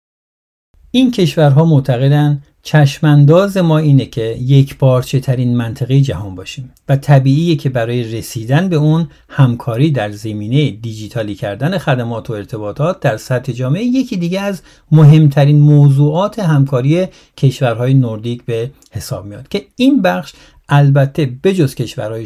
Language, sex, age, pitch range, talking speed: Persian, male, 50-69, 125-160 Hz, 125 wpm